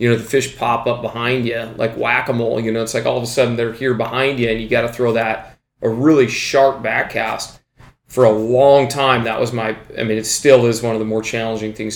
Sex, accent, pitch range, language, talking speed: male, American, 115-135 Hz, English, 255 wpm